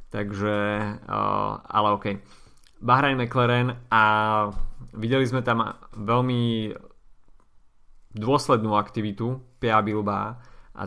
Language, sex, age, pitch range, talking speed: Slovak, male, 20-39, 105-115 Hz, 85 wpm